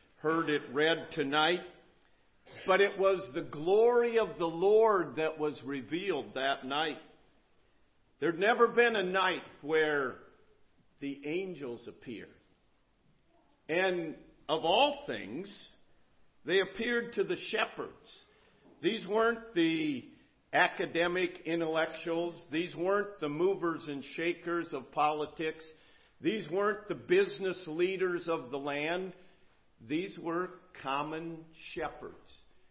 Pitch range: 160-220 Hz